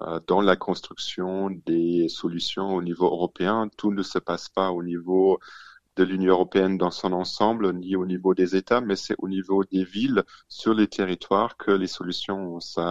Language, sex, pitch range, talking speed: French, male, 85-95 Hz, 175 wpm